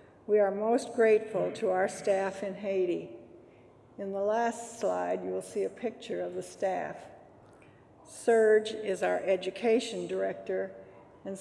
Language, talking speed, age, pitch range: English, 140 wpm, 60-79, 185-210 Hz